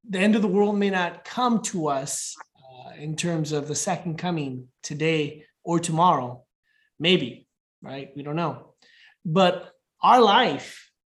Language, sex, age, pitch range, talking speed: English, male, 20-39, 155-200 Hz, 150 wpm